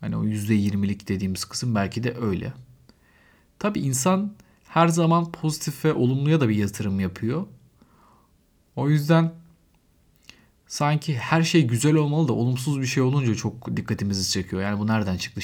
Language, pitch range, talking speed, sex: Turkish, 100-140 Hz, 150 wpm, male